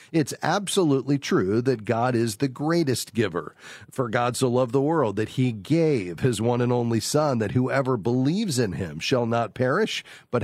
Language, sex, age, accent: English, male, 40-59, American